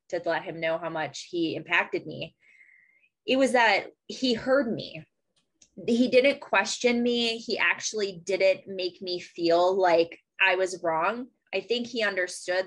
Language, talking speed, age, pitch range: English, 155 wpm, 20-39, 170-210 Hz